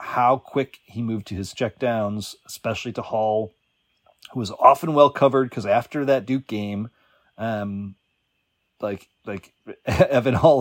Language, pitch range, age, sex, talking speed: English, 95-115 Hz, 30-49, male, 145 wpm